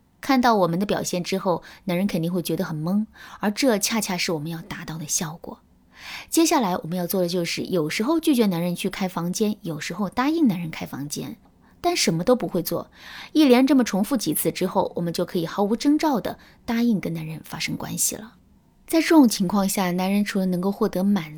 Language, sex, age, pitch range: Chinese, female, 20-39, 170-240 Hz